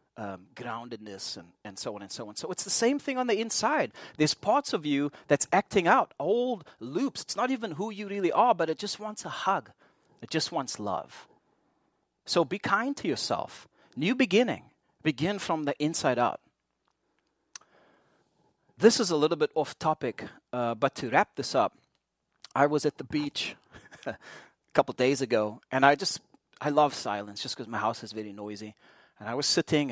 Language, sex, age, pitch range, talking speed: English, male, 30-49, 115-155 Hz, 190 wpm